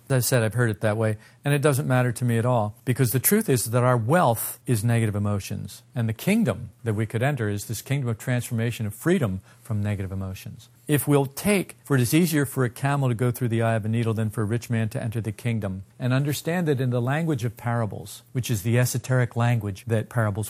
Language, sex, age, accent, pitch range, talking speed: English, male, 50-69, American, 110-140 Hz, 250 wpm